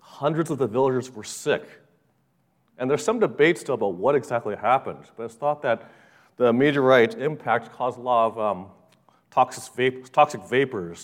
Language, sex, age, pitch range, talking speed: English, male, 40-59, 105-135 Hz, 165 wpm